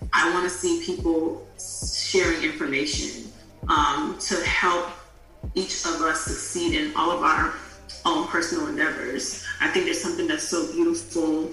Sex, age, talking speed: female, 30-49, 145 wpm